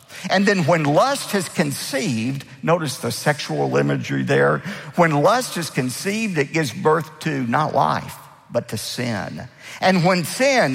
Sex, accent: male, American